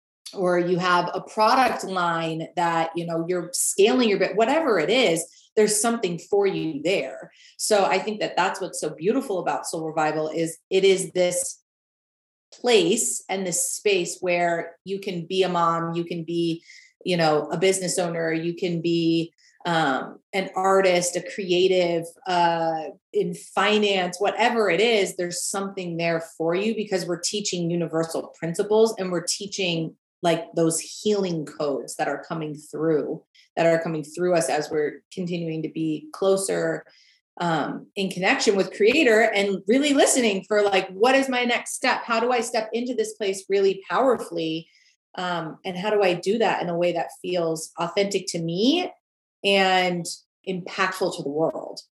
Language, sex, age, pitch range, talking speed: English, female, 30-49, 170-205 Hz, 165 wpm